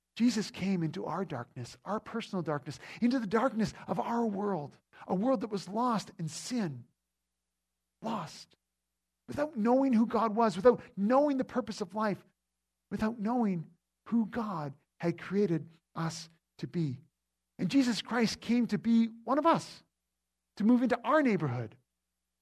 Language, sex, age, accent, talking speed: English, male, 50-69, American, 150 wpm